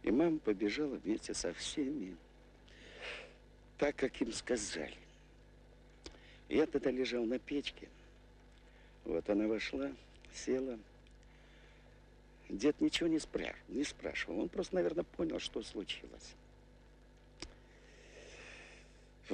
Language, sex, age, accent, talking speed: Russian, male, 60-79, native, 95 wpm